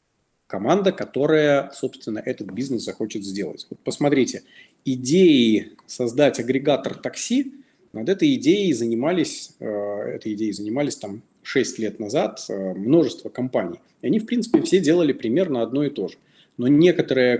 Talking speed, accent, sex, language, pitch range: 135 wpm, native, male, Russian, 115-155 Hz